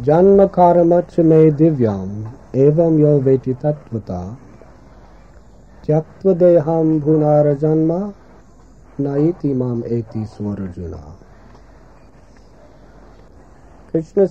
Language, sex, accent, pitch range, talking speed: English, male, American, 100-160 Hz, 60 wpm